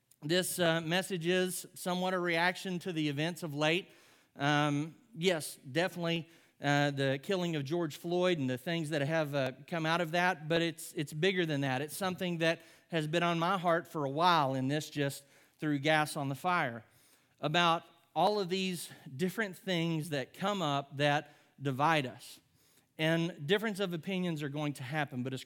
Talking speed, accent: 185 wpm, American